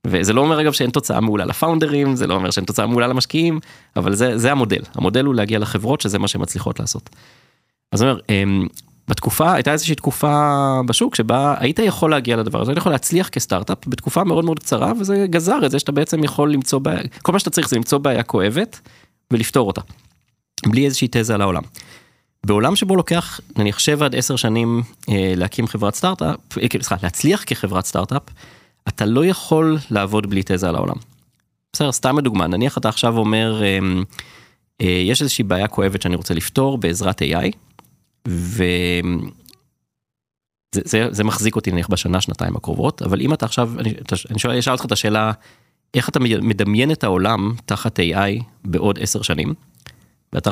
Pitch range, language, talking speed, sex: 100-140 Hz, Hebrew, 155 wpm, male